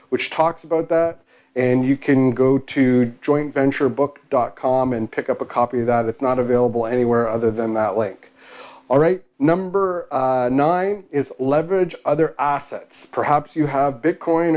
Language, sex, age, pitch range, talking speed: English, male, 40-59, 120-145 Hz, 155 wpm